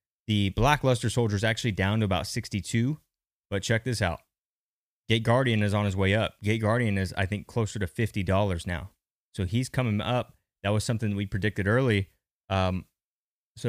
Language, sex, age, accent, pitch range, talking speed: English, male, 20-39, American, 95-120 Hz, 190 wpm